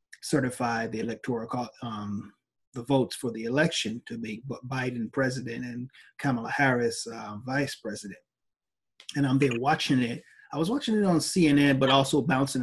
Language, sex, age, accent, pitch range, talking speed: English, male, 30-49, American, 130-190 Hz, 155 wpm